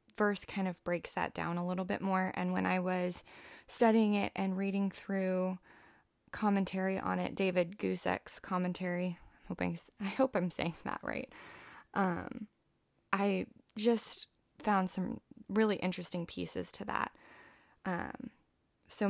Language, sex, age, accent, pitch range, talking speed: English, female, 20-39, American, 175-200 Hz, 140 wpm